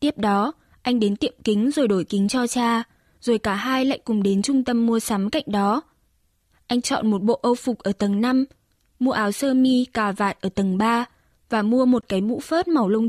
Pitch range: 210-255 Hz